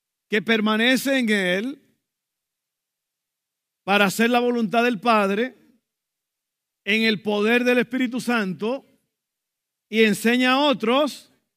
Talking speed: 105 wpm